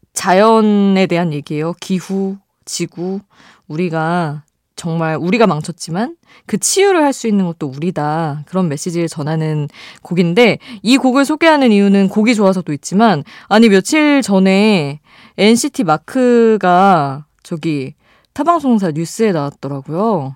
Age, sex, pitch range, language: 20-39, female, 160-220 Hz, Korean